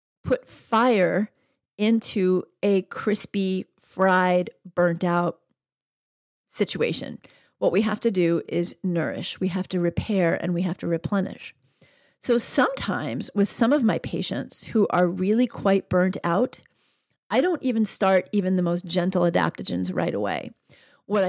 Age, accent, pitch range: 40-59, American, 175-200 Hz